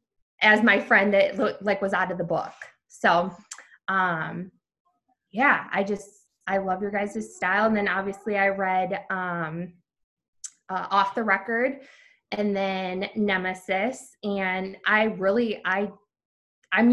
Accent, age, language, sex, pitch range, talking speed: American, 20-39, English, female, 190-235 Hz, 135 wpm